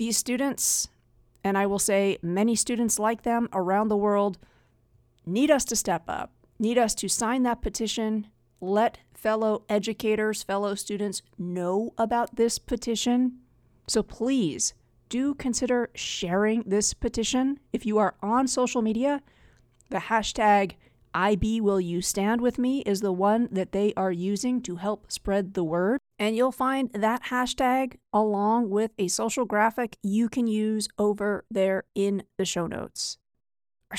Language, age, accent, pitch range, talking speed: English, 40-59, American, 185-230 Hz, 145 wpm